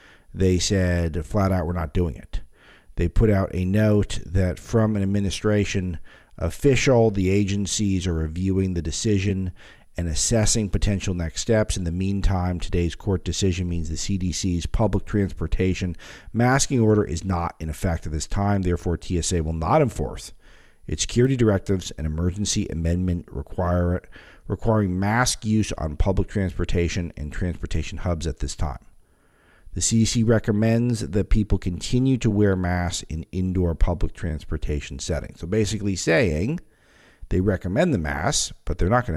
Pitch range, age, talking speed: 85-105 Hz, 50-69, 150 wpm